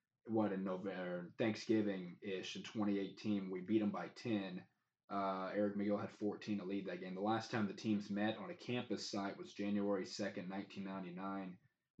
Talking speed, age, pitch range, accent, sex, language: 170 wpm, 20-39, 95-105 Hz, American, male, English